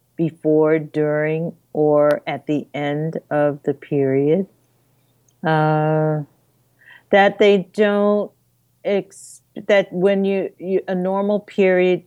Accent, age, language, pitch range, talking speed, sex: American, 50-69, English, 145-165 Hz, 100 wpm, female